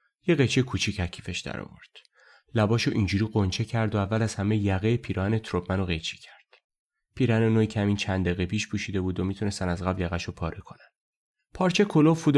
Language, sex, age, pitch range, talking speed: Persian, male, 30-49, 95-125 Hz, 170 wpm